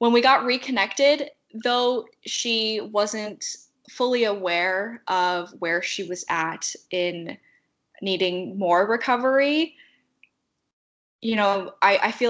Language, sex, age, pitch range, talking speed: English, female, 10-29, 190-235 Hz, 110 wpm